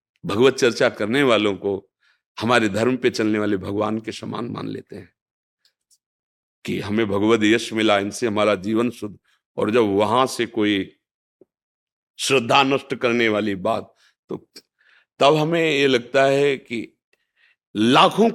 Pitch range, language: 105-140 Hz, Hindi